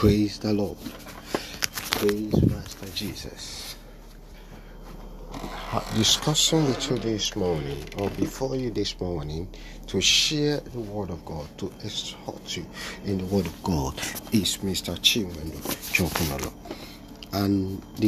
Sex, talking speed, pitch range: male, 120 wpm, 80-105 Hz